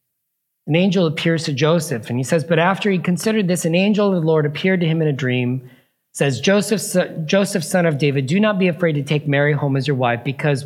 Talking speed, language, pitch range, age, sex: 235 wpm, English, 120-165 Hz, 40-59, male